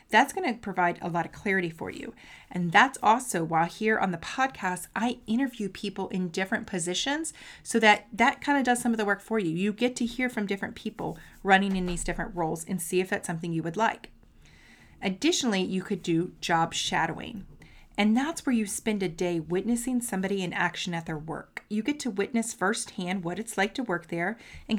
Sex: female